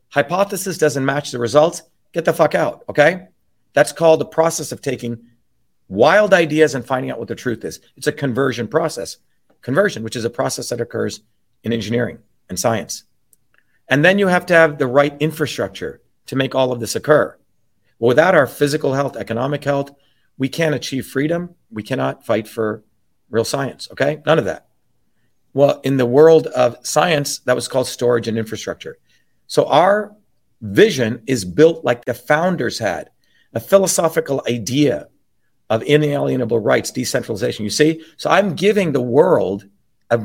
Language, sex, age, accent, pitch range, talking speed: English, male, 40-59, American, 120-160 Hz, 165 wpm